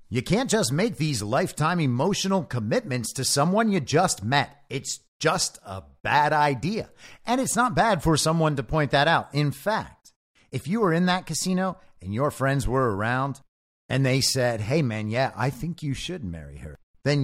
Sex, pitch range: male, 110-155 Hz